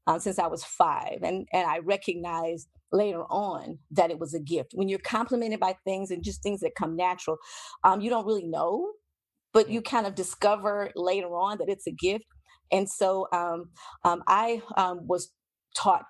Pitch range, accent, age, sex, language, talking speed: 175-200 Hz, American, 40-59, female, English, 190 wpm